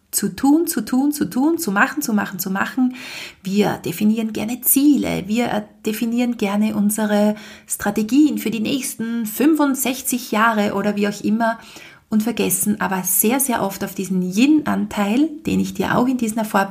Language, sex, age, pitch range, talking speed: German, female, 30-49, 200-240 Hz, 160 wpm